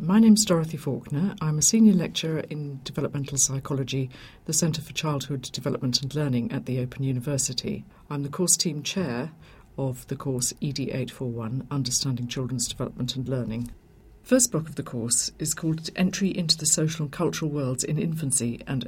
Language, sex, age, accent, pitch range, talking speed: English, female, 50-69, British, 130-160 Hz, 170 wpm